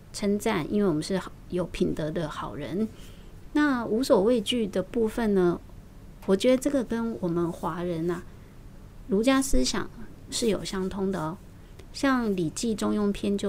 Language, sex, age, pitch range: Chinese, female, 20-39, 170-220 Hz